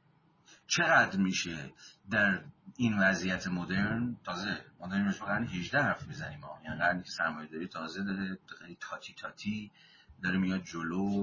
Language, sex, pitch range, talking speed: Persian, male, 90-105 Hz, 125 wpm